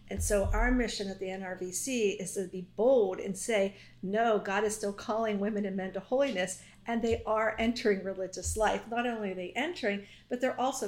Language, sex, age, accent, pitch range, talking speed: English, female, 50-69, American, 195-230 Hz, 205 wpm